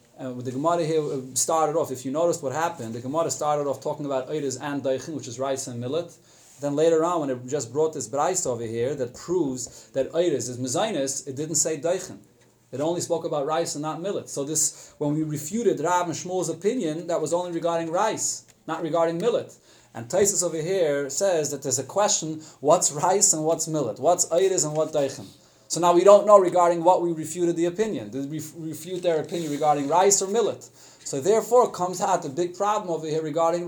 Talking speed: 210 wpm